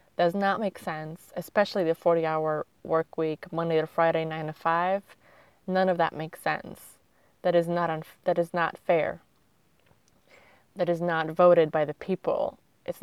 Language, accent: English, American